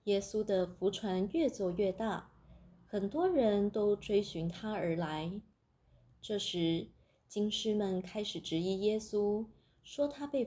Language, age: Chinese, 20-39